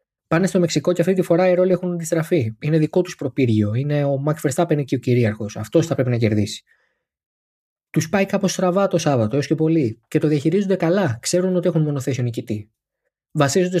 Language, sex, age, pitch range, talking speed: Greek, male, 20-39, 125-180 Hz, 205 wpm